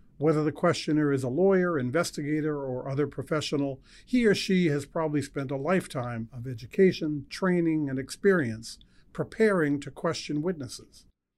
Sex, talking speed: male, 140 wpm